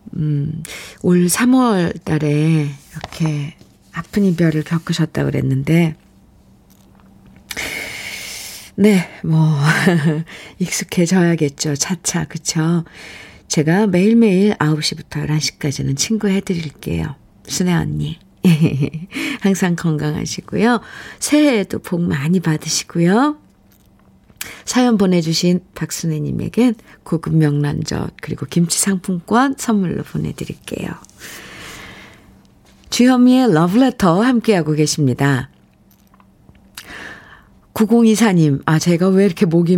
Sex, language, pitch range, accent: female, Korean, 155-215 Hz, native